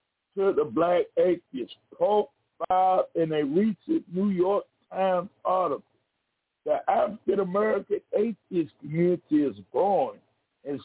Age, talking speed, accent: 60-79, 115 wpm, American